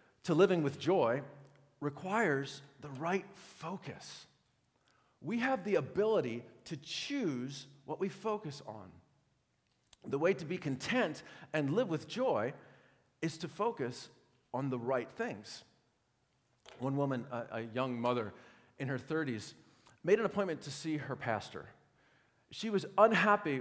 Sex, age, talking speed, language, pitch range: male, 40-59, 135 wpm, English, 120-180 Hz